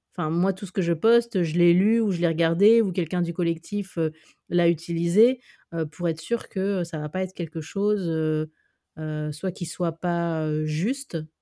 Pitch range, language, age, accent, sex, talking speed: 155-180 Hz, French, 30-49, French, female, 215 wpm